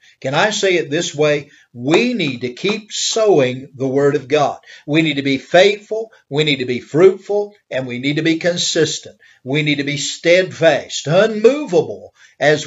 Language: English